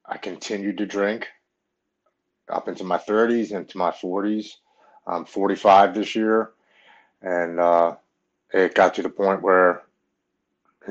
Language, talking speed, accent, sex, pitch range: English, 130 wpm, American, male, 90-100 Hz